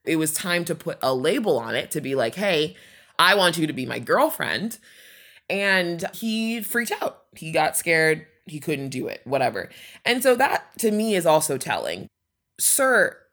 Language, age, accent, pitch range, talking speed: English, 20-39, American, 160-225 Hz, 185 wpm